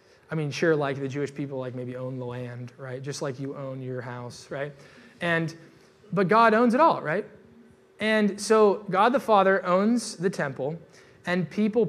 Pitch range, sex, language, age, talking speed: 145-200 Hz, male, English, 20-39, 185 wpm